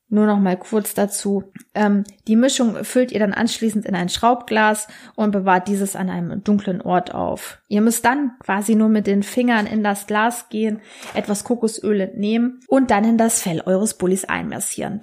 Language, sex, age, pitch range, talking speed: German, female, 20-39, 190-225 Hz, 185 wpm